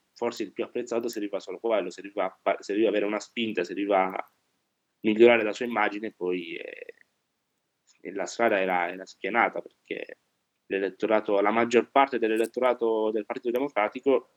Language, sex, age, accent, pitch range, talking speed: Italian, male, 20-39, native, 105-120 Hz, 170 wpm